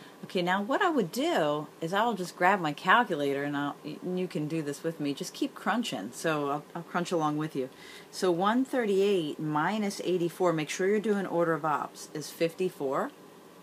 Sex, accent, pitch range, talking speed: female, American, 145-180 Hz, 185 wpm